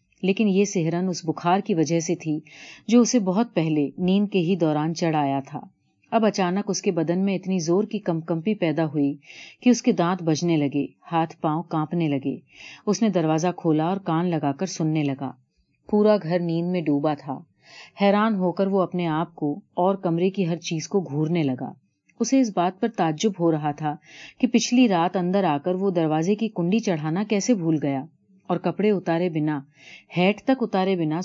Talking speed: 200 wpm